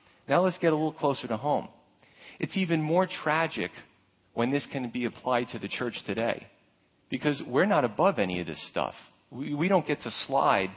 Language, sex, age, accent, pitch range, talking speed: English, male, 40-59, American, 115-155 Hz, 195 wpm